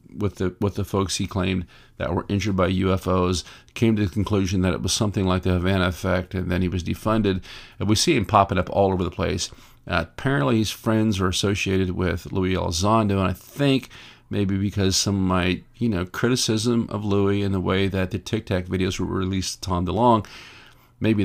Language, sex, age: English, male, 50-69